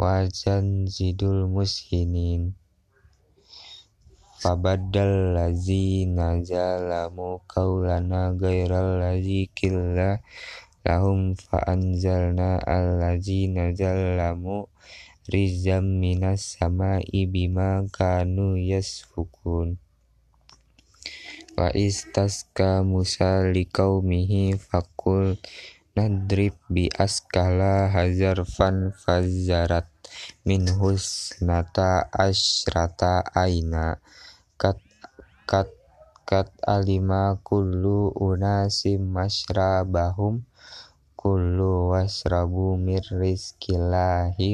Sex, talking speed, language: male, 60 wpm, Indonesian